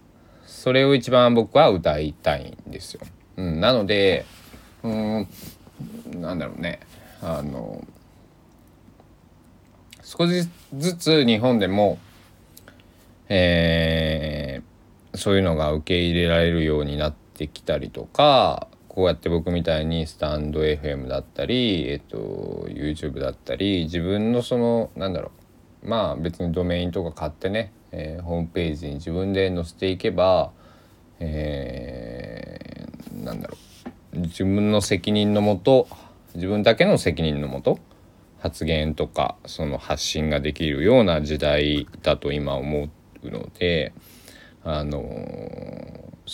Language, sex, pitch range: Japanese, male, 75-105 Hz